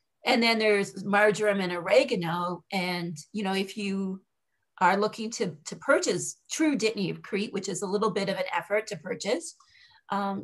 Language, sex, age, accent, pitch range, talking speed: English, female, 40-59, American, 190-225 Hz, 180 wpm